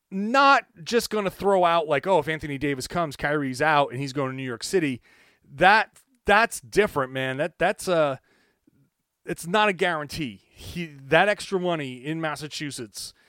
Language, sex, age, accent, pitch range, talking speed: English, male, 30-49, American, 125-170 Hz, 170 wpm